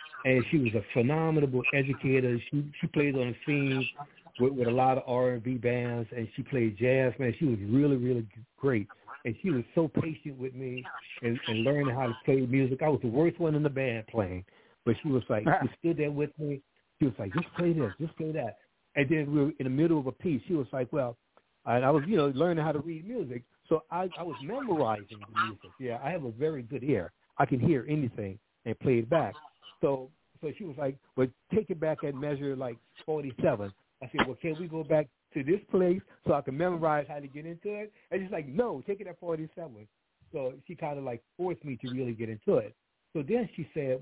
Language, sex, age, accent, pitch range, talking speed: English, male, 60-79, American, 120-155 Hz, 235 wpm